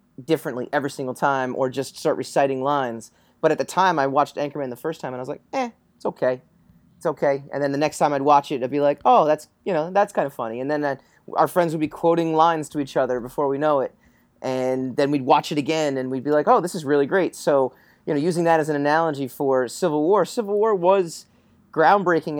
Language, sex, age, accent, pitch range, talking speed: English, male, 30-49, American, 135-160 Hz, 245 wpm